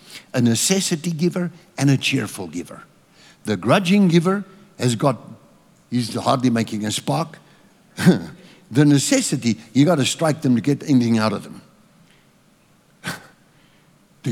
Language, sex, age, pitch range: English, male, 60-79, 115-165 Hz